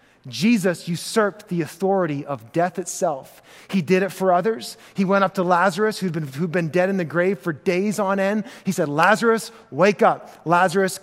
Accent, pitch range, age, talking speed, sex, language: American, 180-250 Hz, 30-49, 190 wpm, male, English